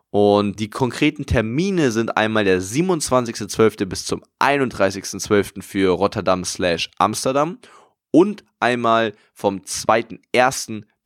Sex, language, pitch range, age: male, German, 95-115 Hz, 10-29